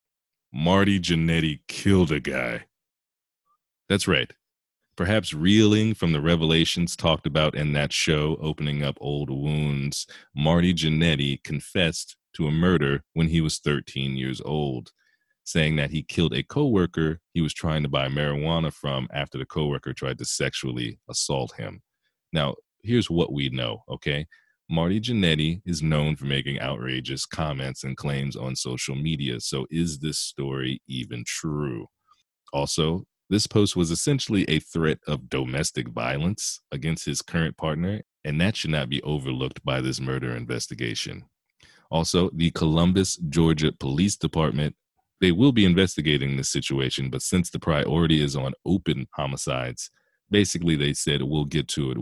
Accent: American